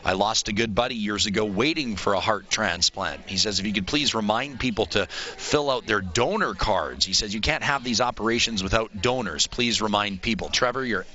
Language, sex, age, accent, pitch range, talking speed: English, male, 40-59, American, 100-120 Hz, 215 wpm